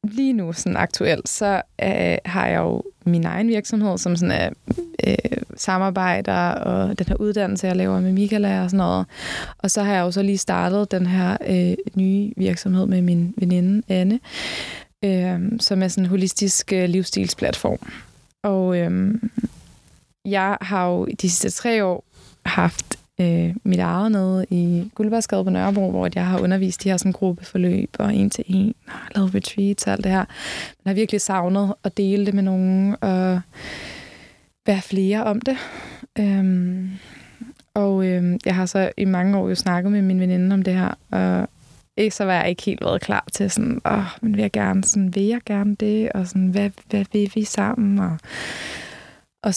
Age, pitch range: 20-39, 180-205 Hz